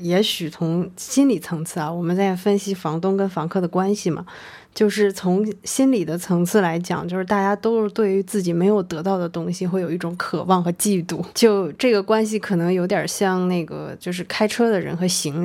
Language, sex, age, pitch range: Chinese, female, 20-39, 180-215 Hz